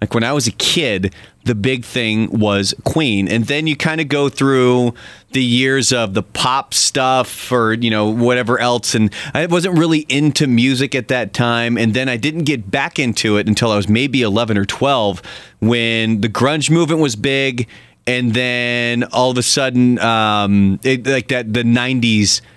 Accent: American